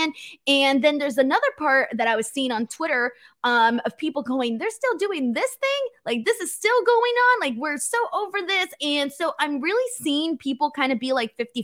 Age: 20-39